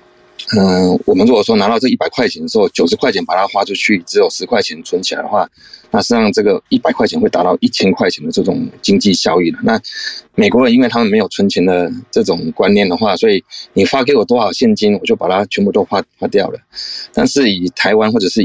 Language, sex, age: Chinese, male, 20-39